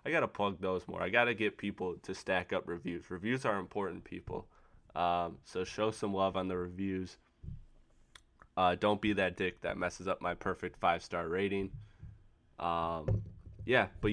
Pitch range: 90-100 Hz